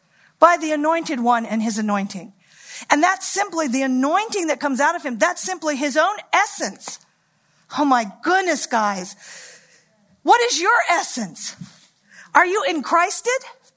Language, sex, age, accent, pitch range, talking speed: English, female, 50-69, American, 220-360 Hz, 150 wpm